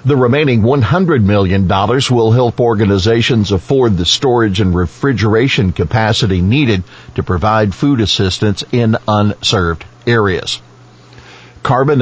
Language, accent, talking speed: English, American, 110 wpm